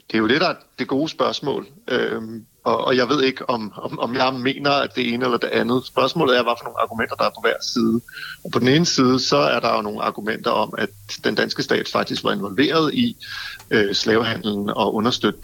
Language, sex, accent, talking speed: Danish, male, native, 220 wpm